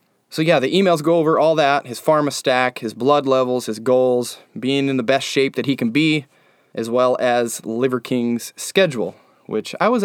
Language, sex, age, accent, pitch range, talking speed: English, male, 20-39, American, 115-135 Hz, 205 wpm